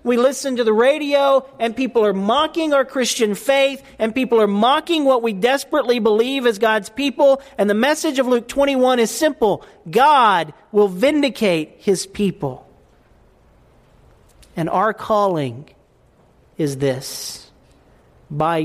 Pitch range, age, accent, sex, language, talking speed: 150-230 Hz, 40-59, American, male, English, 135 wpm